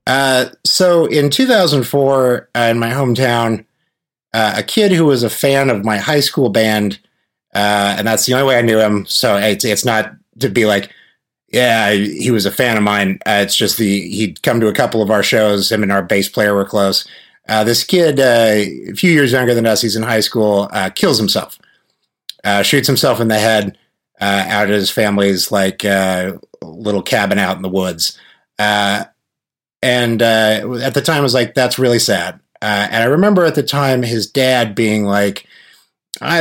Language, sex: English, male